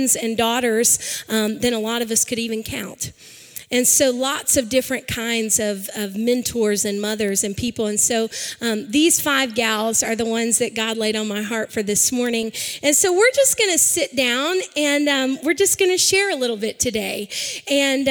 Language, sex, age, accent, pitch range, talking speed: English, female, 30-49, American, 220-270 Hz, 205 wpm